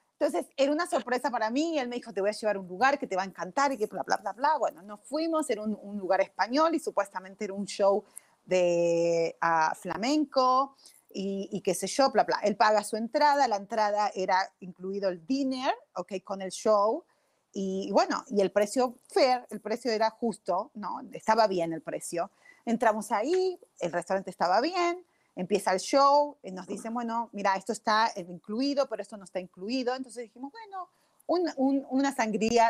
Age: 30-49